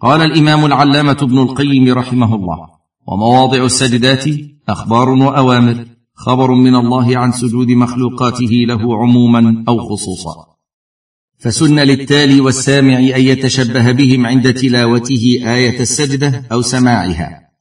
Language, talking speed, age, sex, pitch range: Arabic, 110 wpm, 50-69, male, 110-135 Hz